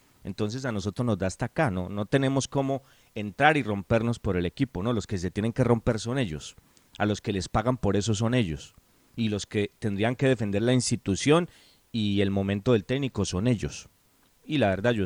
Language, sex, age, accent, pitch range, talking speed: Spanish, male, 40-59, Colombian, 95-125 Hz, 215 wpm